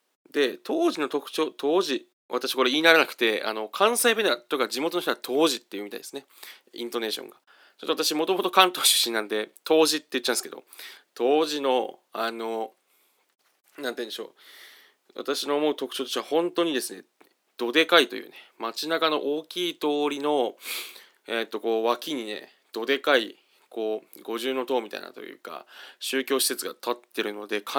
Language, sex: Japanese, male